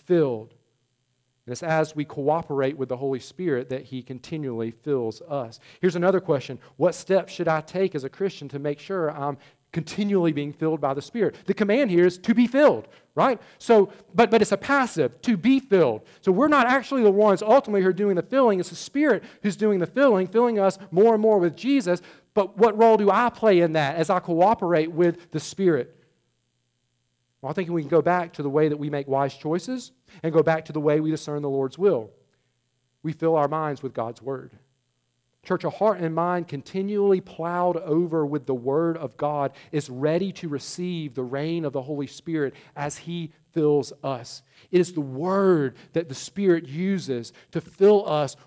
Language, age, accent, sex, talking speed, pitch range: English, 40-59, American, male, 205 wpm, 140-190 Hz